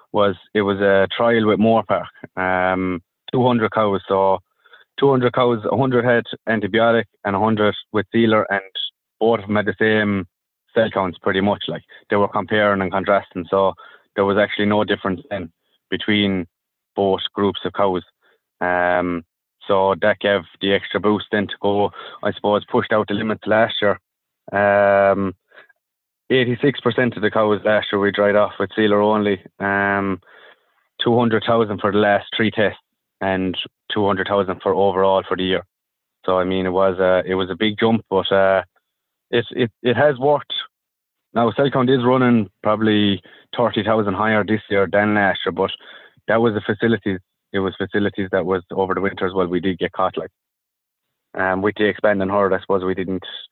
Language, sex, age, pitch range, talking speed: English, male, 20-39, 95-110 Hz, 170 wpm